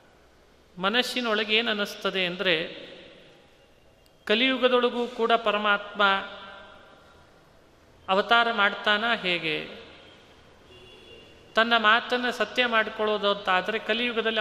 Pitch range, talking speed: 195-235 Hz, 70 wpm